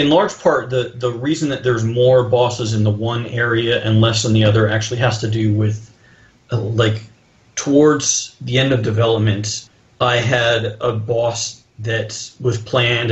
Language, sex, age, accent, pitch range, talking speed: English, male, 40-59, American, 105-120 Hz, 175 wpm